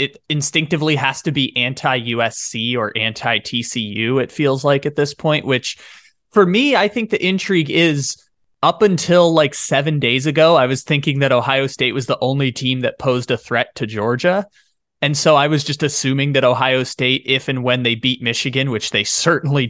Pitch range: 120-145 Hz